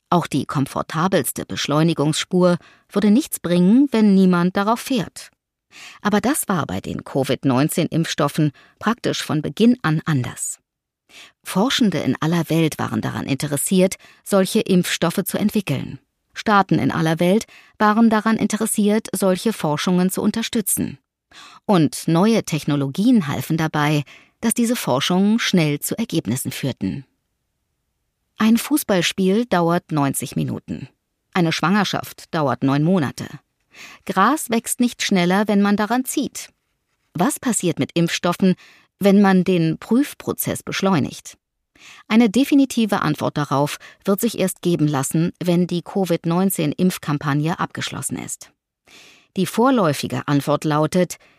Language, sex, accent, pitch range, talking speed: German, female, German, 155-215 Hz, 120 wpm